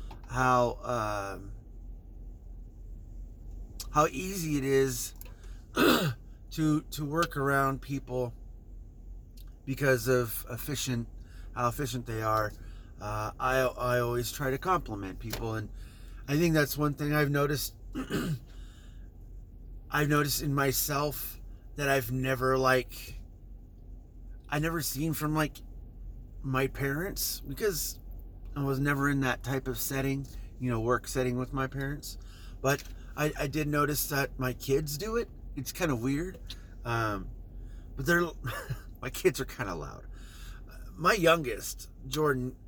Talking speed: 130 wpm